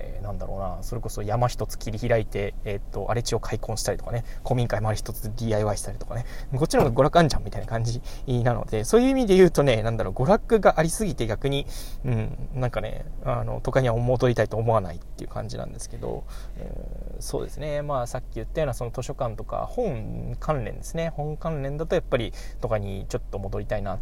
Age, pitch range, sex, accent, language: 20-39, 105-130 Hz, male, native, Japanese